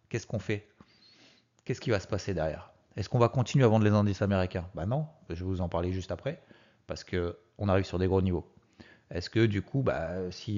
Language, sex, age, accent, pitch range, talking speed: French, male, 30-49, French, 95-115 Hz, 235 wpm